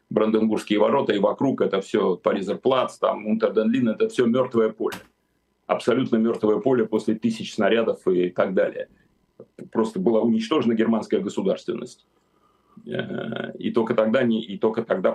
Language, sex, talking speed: Russian, male, 135 wpm